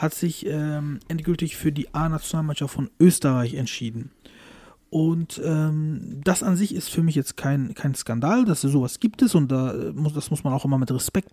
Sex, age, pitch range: male, 40-59, 145-190 Hz